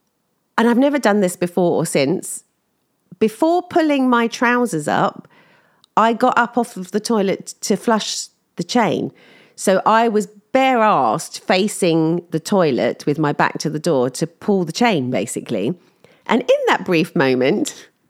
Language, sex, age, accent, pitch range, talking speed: English, female, 40-59, British, 155-235 Hz, 160 wpm